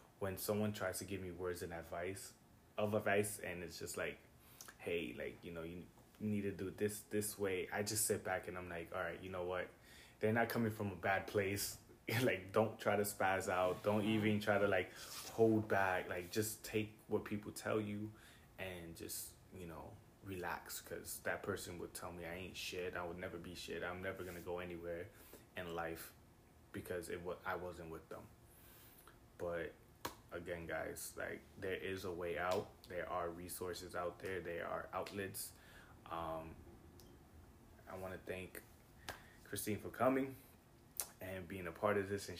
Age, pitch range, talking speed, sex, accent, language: 20-39, 90-110 Hz, 185 wpm, male, American, English